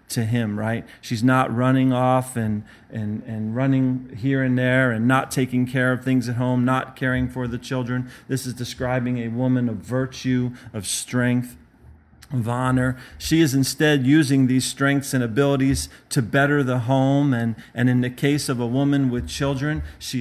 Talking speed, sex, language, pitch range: 180 wpm, male, English, 120-135 Hz